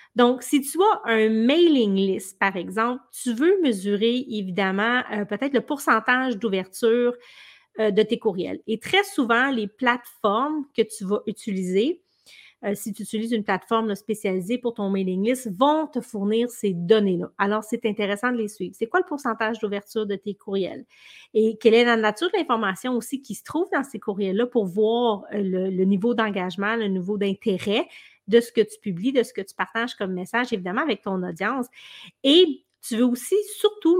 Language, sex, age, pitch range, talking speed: French, female, 30-49, 205-245 Hz, 185 wpm